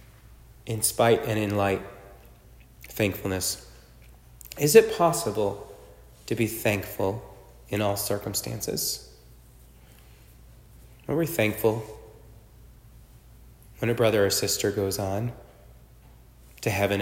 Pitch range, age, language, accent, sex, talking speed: 100-120 Hz, 30-49, English, American, male, 95 wpm